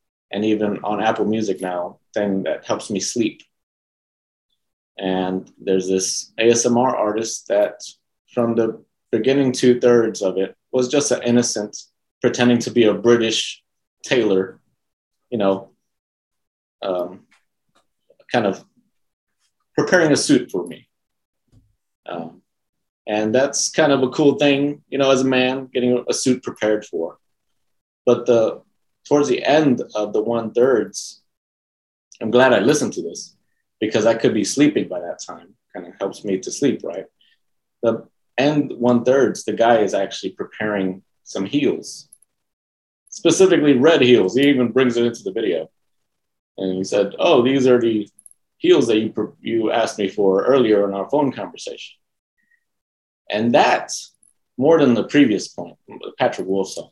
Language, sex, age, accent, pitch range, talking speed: English, male, 30-49, American, 100-130 Hz, 150 wpm